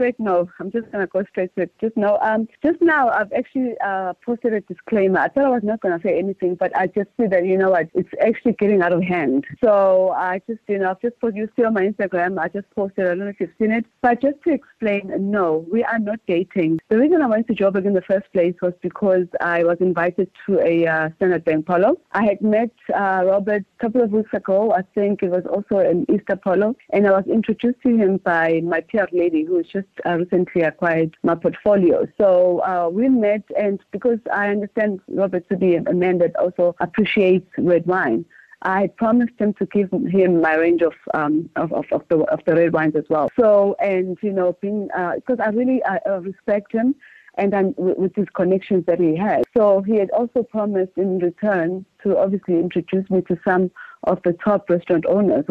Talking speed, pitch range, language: 220 wpm, 180-215 Hz, English